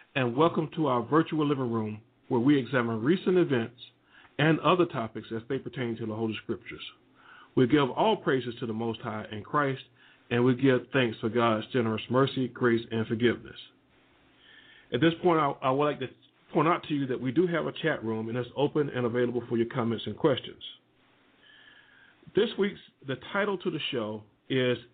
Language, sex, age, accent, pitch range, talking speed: English, male, 50-69, American, 120-155 Hz, 190 wpm